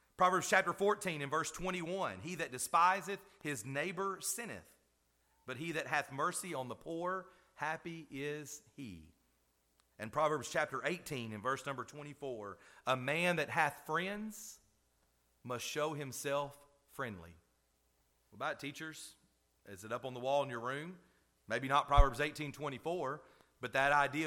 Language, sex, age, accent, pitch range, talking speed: English, male, 40-59, American, 130-170 Hz, 145 wpm